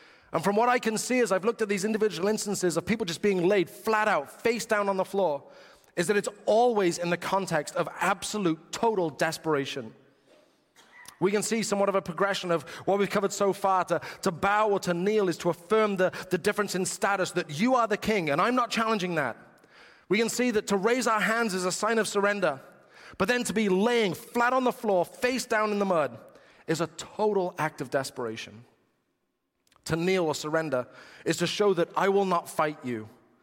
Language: English